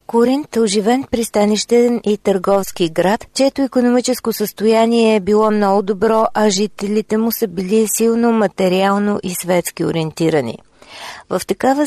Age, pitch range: 40-59, 180-230 Hz